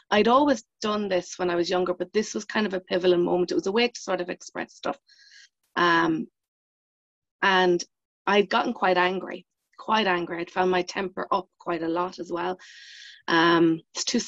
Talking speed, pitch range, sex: 195 wpm, 175-210 Hz, female